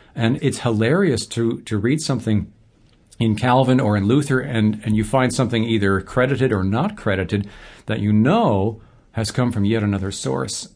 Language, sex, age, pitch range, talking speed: English, male, 50-69, 105-130 Hz, 175 wpm